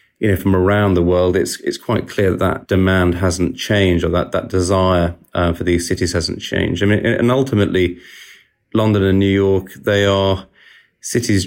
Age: 30-49